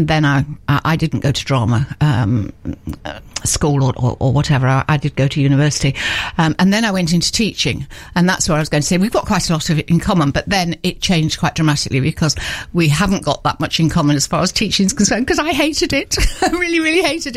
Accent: British